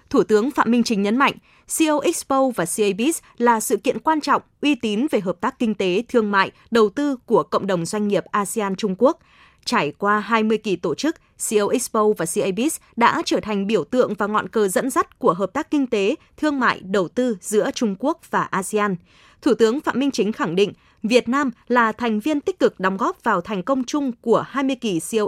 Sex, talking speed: female, 220 wpm